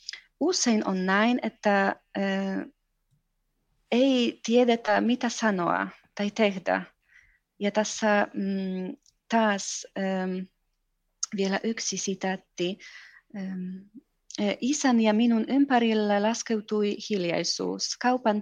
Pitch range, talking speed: 190-230 Hz, 75 wpm